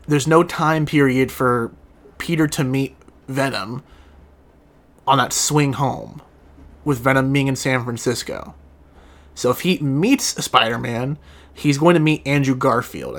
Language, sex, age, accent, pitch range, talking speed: English, male, 30-49, American, 125-145 Hz, 135 wpm